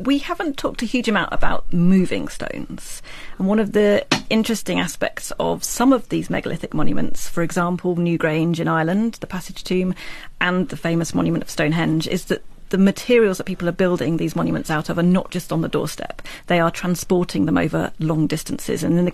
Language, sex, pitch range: English, female, 165-200 Hz